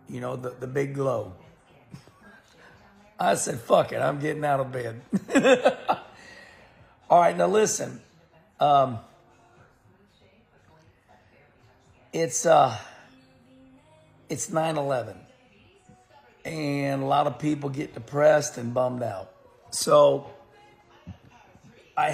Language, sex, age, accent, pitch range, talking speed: English, male, 60-79, American, 125-160 Hz, 100 wpm